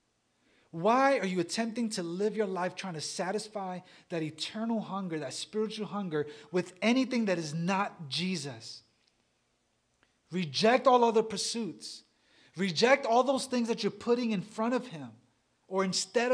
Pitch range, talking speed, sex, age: 160-205 Hz, 145 wpm, male, 30-49